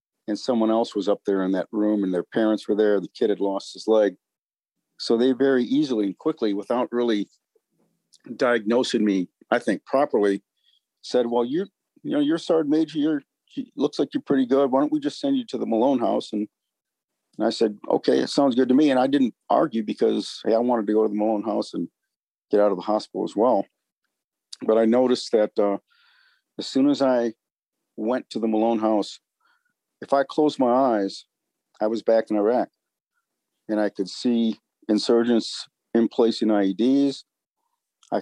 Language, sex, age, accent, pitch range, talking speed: English, male, 50-69, American, 105-135 Hz, 195 wpm